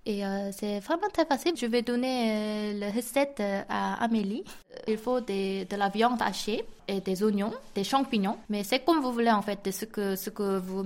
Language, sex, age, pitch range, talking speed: French, female, 20-39, 200-245 Hz, 210 wpm